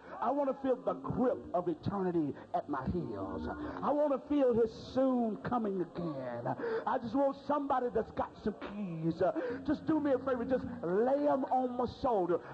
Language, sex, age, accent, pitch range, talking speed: English, male, 50-69, American, 190-250 Hz, 180 wpm